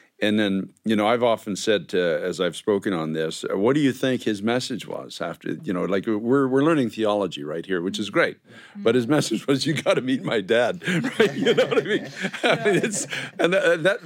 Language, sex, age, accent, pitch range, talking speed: English, male, 50-69, American, 110-140 Hz, 225 wpm